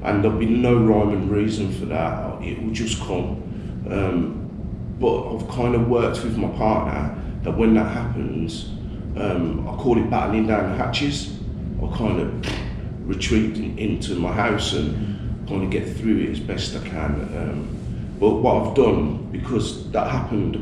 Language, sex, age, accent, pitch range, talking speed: English, male, 30-49, British, 90-110 Hz, 180 wpm